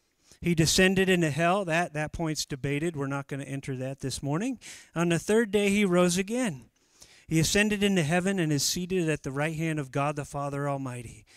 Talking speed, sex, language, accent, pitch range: 205 wpm, male, English, American, 145-190 Hz